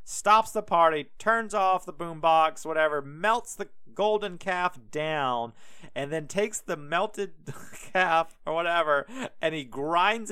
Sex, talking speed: male, 140 wpm